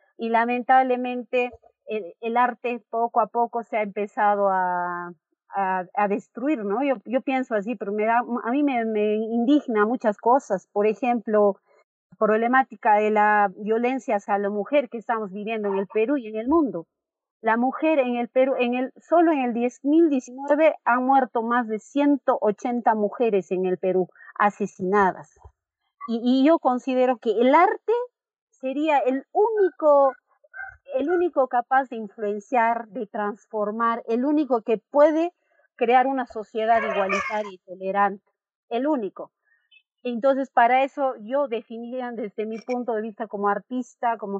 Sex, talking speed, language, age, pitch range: female, 155 wpm, Spanish, 40-59, 210-260 Hz